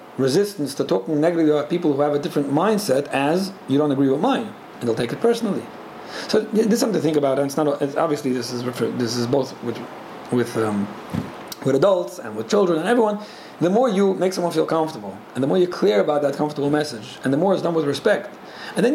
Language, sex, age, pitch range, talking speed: English, male, 40-59, 140-190 Hz, 240 wpm